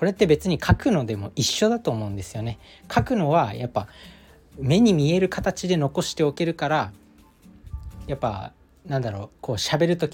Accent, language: native, Japanese